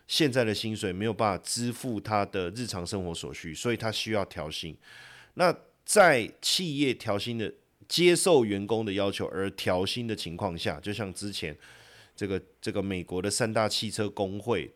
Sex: male